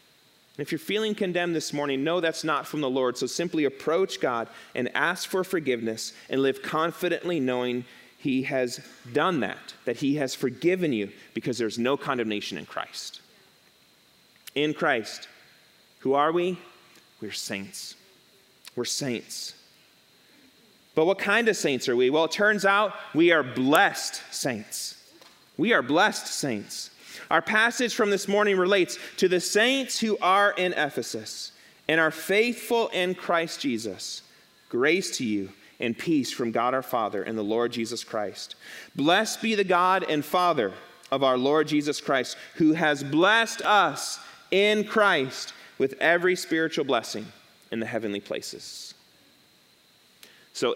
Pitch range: 130-200 Hz